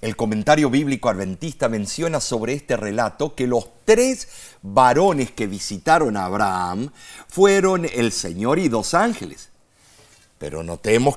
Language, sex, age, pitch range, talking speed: Spanish, male, 50-69, 105-165 Hz, 130 wpm